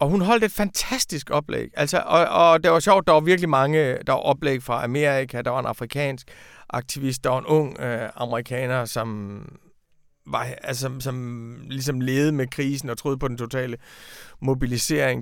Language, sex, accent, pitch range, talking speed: Danish, male, native, 135-170 Hz, 180 wpm